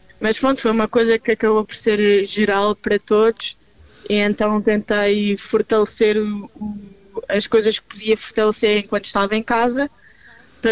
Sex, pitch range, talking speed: female, 190-215 Hz, 145 wpm